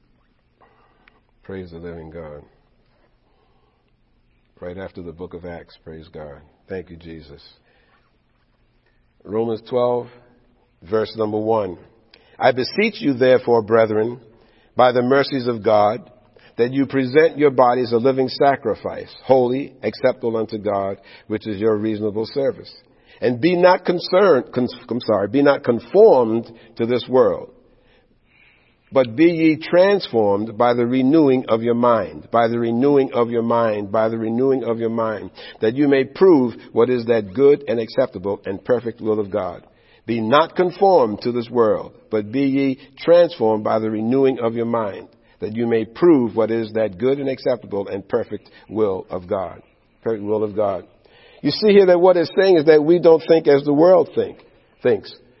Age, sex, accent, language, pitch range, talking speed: 50-69, male, American, English, 110-140 Hz, 160 wpm